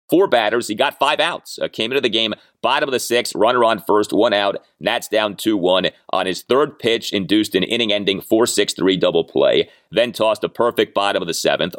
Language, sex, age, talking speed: English, male, 30-49, 210 wpm